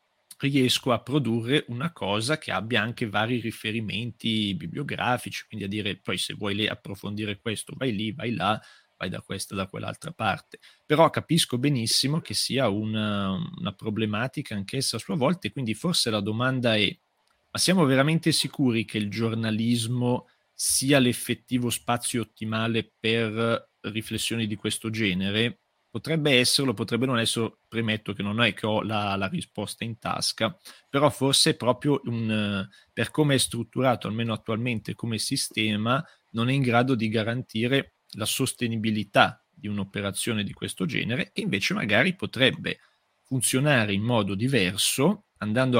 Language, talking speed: Italian, 150 wpm